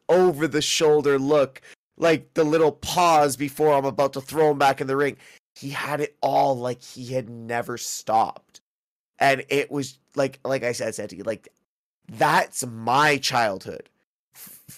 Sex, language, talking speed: male, English, 175 wpm